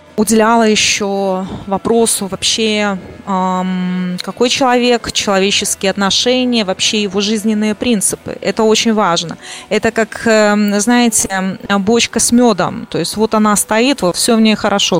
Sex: female